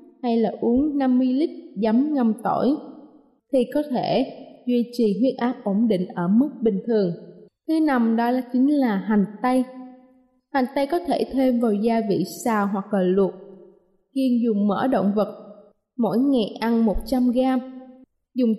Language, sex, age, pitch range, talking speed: Vietnamese, female, 20-39, 210-275 Hz, 170 wpm